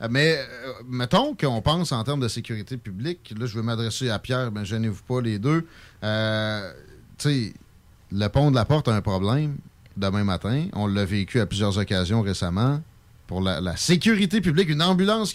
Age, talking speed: 30-49, 190 wpm